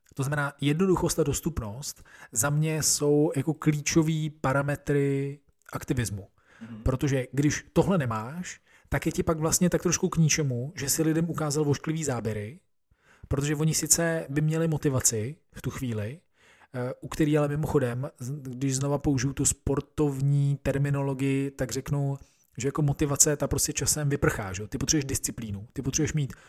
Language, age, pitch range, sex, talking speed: Czech, 40-59, 130-150 Hz, male, 150 wpm